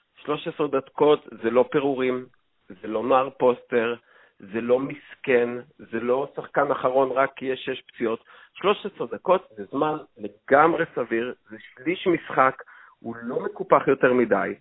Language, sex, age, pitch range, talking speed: Hebrew, male, 50-69, 125-180 Hz, 145 wpm